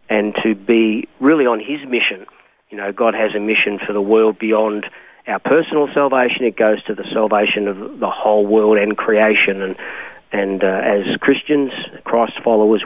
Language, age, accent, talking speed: English, 40-59, Australian, 175 wpm